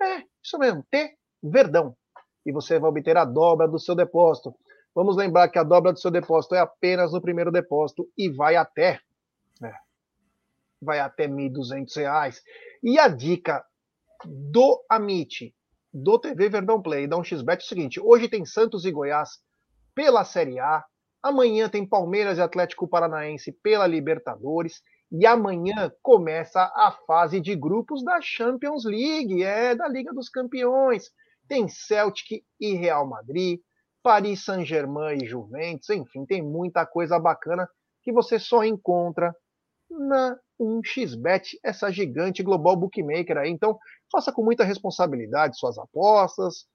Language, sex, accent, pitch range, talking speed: Portuguese, male, Brazilian, 170-235 Hz, 140 wpm